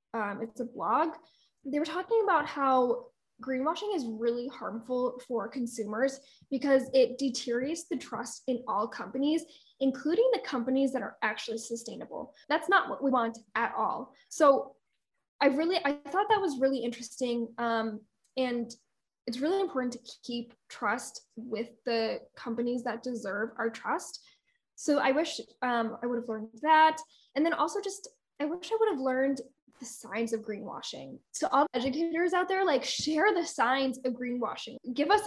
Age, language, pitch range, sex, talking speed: 10-29, English, 240-305 Hz, female, 165 wpm